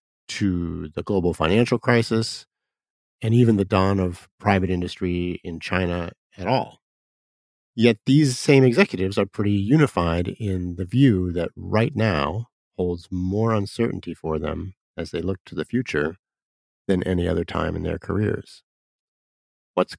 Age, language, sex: 50-69, English, male